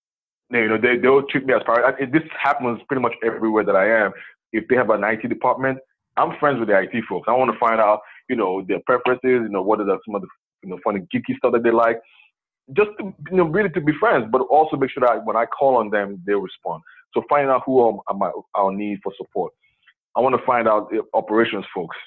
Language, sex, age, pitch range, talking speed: English, male, 20-39, 100-130 Hz, 260 wpm